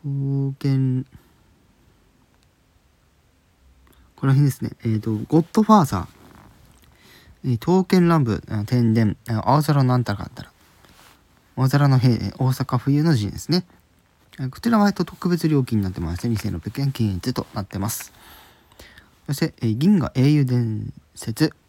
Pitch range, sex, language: 100-140 Hz, male, Japanese